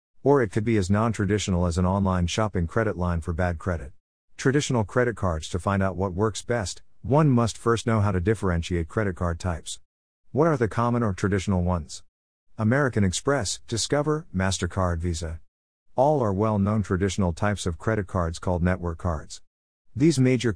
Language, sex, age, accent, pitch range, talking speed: English, male, 50-69, American, 85-115 Hz, 170 wpm